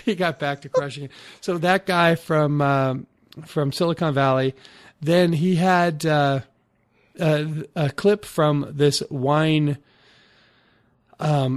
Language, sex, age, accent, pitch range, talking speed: English, male, 40-59, American, 130-150 Hz, 130 wpm